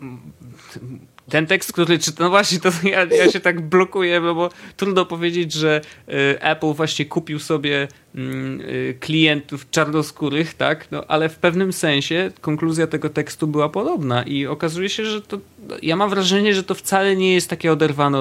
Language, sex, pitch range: Polish, male, 115-160 Hz